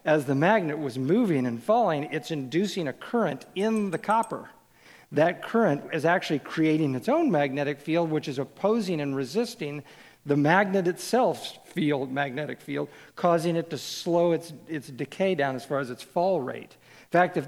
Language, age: English, 50-69